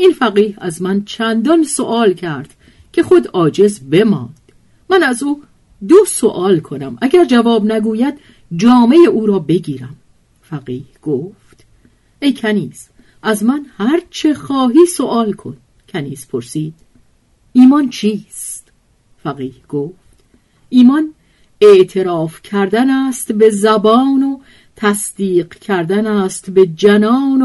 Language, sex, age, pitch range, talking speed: Persian, female, 50-69, 170-245 Hz, 115 wpm